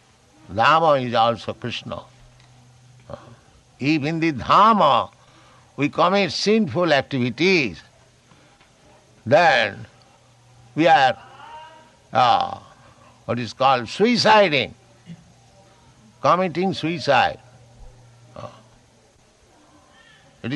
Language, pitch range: English, 115-160 Hz